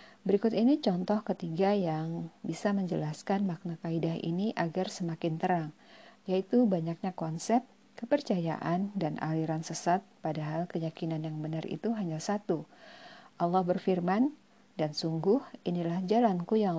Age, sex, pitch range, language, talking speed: 50-69, female, 165-210 Hz, Indonesian, 120 wpm